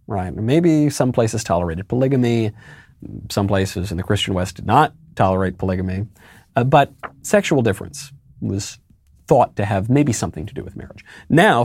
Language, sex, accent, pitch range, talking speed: English, male, American, 95-135 Hz, 160 wpm